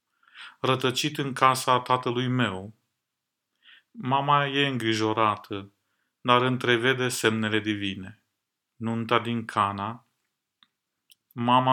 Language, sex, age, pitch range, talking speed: Romanian, male, 30-49, 105-125 Hz, 80 wpm